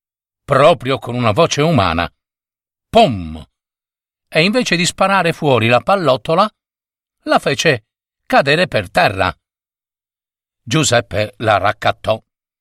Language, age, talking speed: Italian, 50-69, 100 wpm